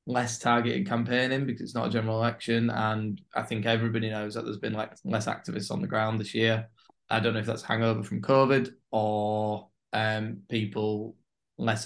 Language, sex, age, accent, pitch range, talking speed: English, male, 20-39, British, 105-120 Hz, 185 wpm